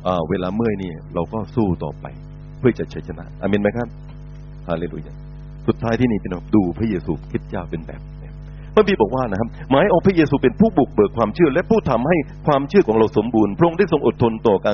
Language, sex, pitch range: Thai, male, 105-150 Hz